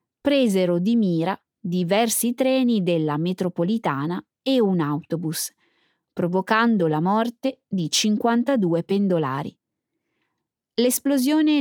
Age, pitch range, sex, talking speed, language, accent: 20-39, 175-240 Hz, female, 90 wpm, Italian, native